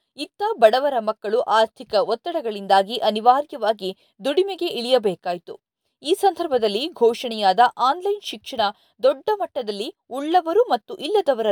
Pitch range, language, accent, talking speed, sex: 220-320 Hz, Kannada, native, 95 wpm, female